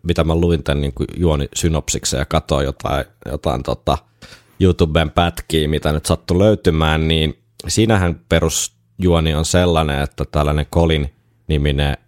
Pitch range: 75-90 Hz